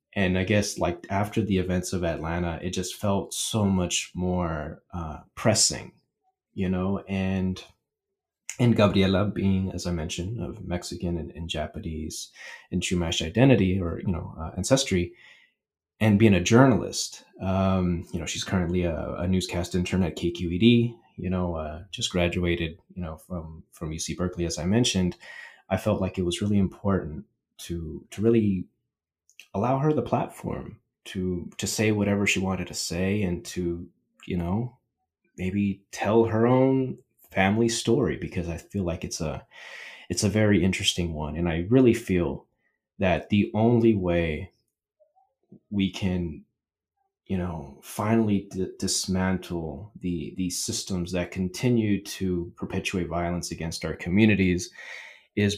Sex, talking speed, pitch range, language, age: male, 150 wpm, 85-105 Hz, English, 30-49